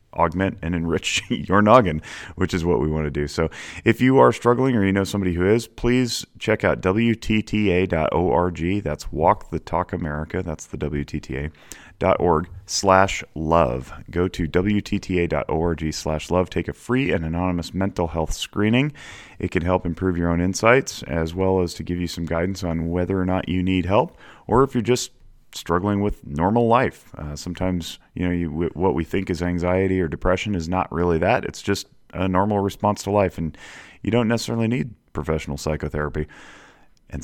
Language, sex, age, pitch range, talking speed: English, male, 30-49, 80-100 Hz, 180 wpm